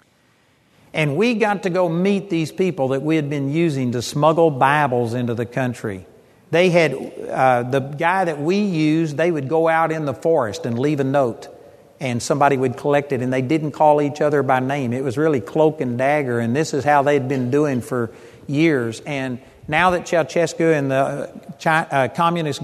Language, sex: English, male